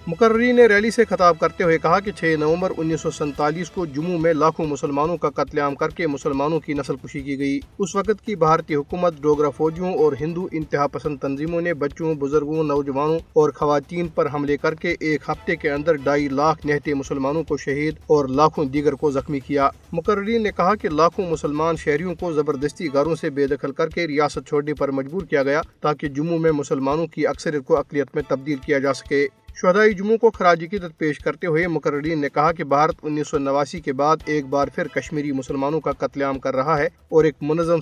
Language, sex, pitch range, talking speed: Urdu, male, 145-175 Hz, 210 wpm